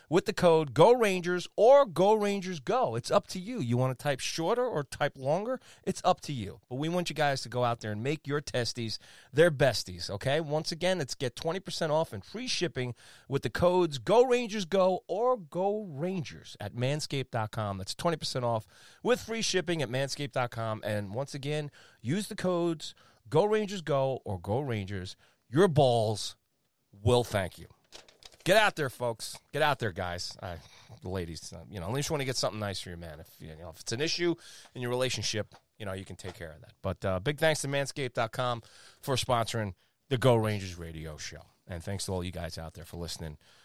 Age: 30-49